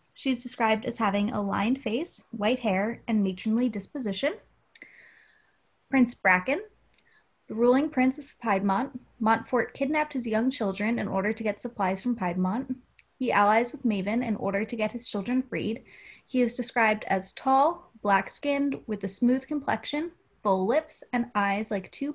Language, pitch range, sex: English, 205-255 Hz, female